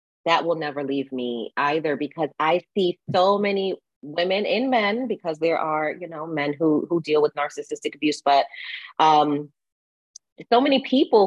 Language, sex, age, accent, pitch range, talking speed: English, female, 30-49, American, 145-180 Hz, 165 wpm